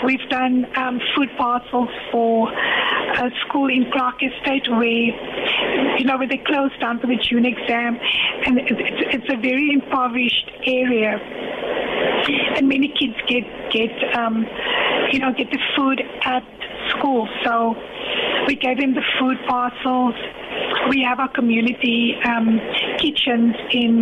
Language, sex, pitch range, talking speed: English, female, 235-270 Hz, 140 wpm